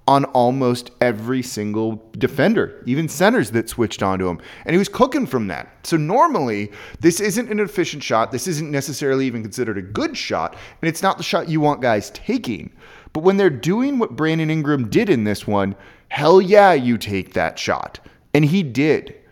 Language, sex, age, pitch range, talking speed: English, male, 30-49, 130-190 Hz, 190 wpm